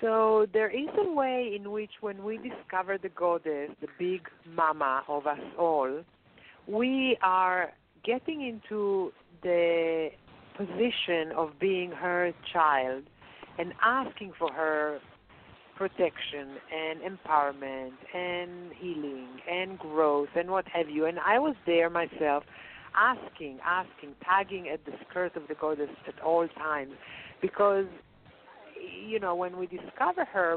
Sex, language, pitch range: female, English, 160-200 Hz